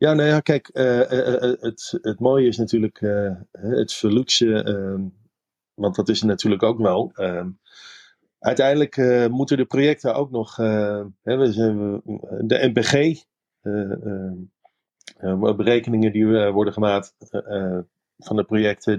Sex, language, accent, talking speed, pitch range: male, Dutch, Dutch, 150 wpm, 95-115 Hz